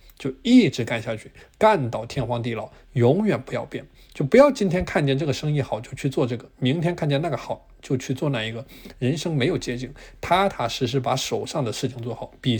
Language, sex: Chinese, male